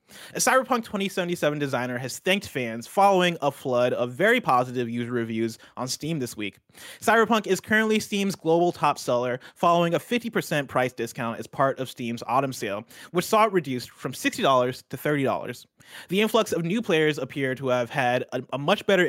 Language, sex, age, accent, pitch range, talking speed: English, male, 30-49, American, 125-185 Hz, 180 wpm